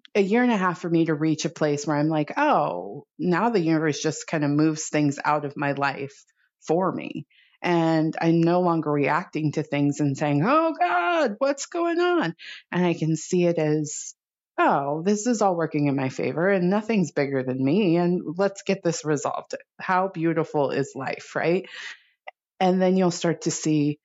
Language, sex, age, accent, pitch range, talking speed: English, female, 30-49, American, 150-185 Hz, 195 wpm